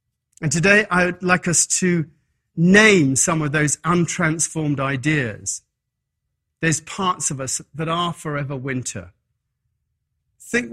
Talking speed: 125 wpm